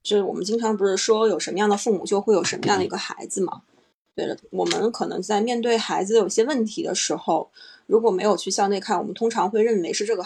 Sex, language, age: female, Chinese, 20-39